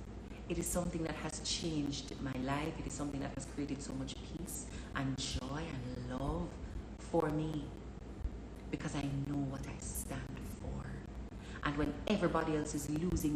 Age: 40-59